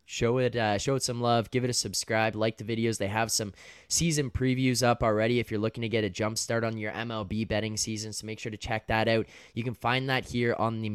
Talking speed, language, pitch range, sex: 260 wpm, English, 100-115 Hz, male